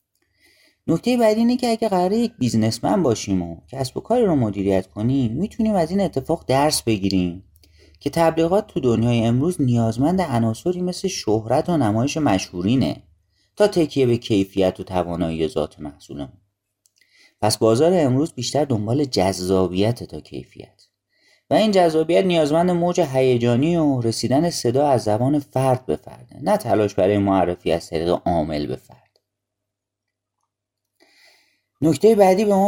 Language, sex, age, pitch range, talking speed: Persian, male, 30-49, 105-165 Hz, 140 wpm